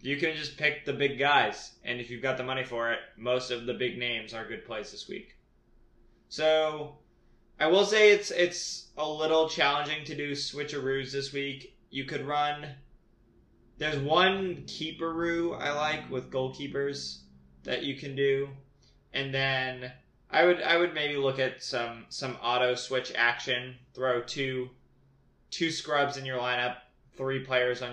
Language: English